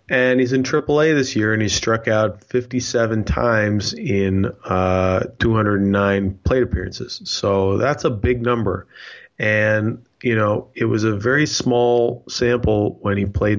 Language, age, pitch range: English, 30-49, 95-120 Hz